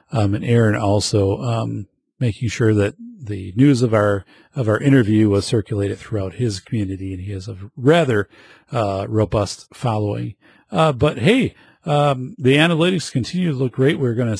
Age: 40-59